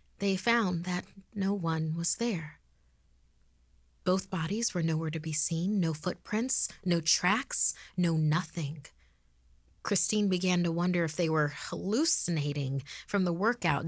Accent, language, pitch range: American, English, 150-185 Hz